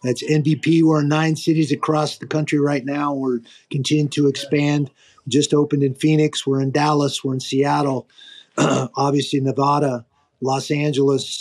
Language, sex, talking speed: English, male, 155 wpm